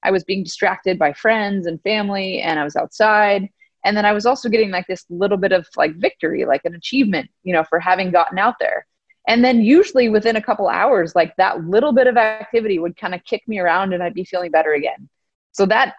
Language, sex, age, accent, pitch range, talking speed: English, female, 20-39, American, 175-220 Hz, 235 wpm